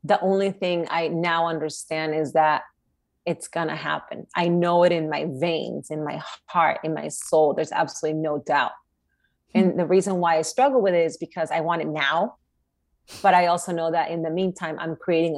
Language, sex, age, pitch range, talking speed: English, female, 30-49, 155-180 Hz, 205 wpm